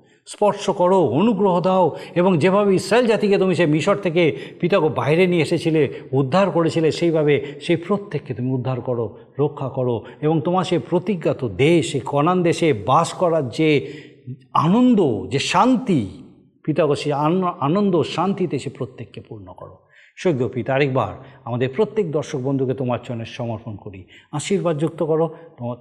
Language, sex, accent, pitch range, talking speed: Bengali, male, native, 125-170 Hz, 145 wpm